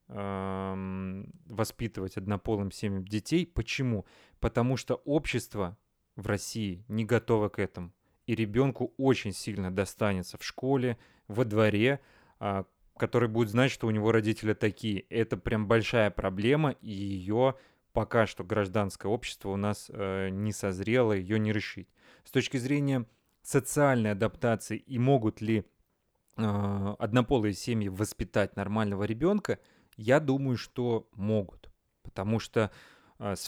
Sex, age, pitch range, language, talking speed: male, 30-49, 100-120 Hz, Russian, 120 wpm